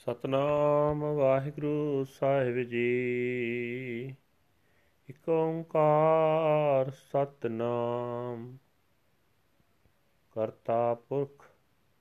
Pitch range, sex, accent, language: 120-140 Hz, male, Indian, English